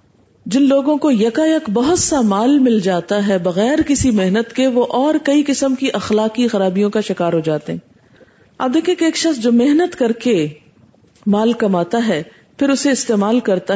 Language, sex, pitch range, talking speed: Urdu, female, 210-285 Hz, 185 wpm